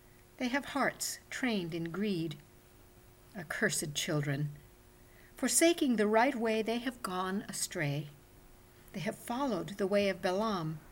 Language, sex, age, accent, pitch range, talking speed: English, female, 50-69, American, 165-240 Hz, 125 wpm